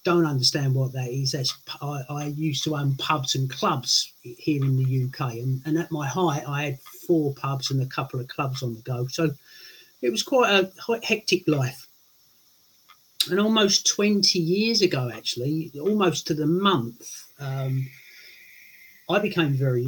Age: 50-69